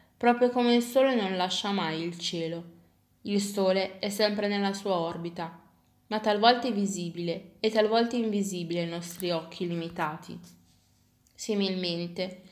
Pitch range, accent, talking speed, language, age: 180-220 Hz, native, 135 wpm, Italian, 20-39